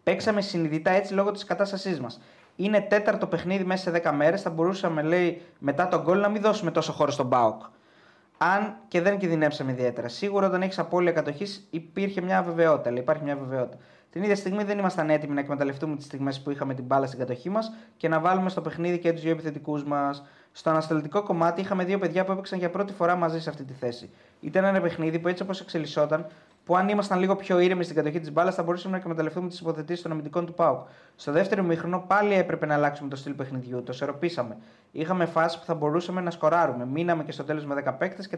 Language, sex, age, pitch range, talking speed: Greek, male, 20-39, 150-185 Hz, 225 wpm